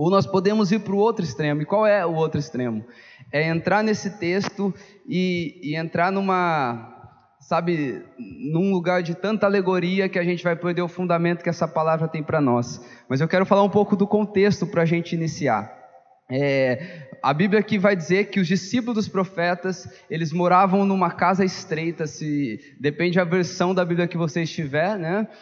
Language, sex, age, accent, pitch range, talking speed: Portuguese, male, 20-39, Brazilian, 160-195 Hz, 185 wpm